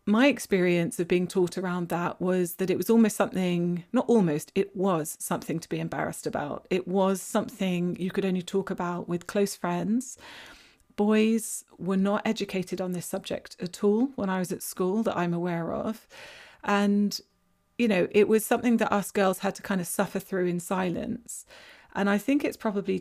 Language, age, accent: English, 30-49, British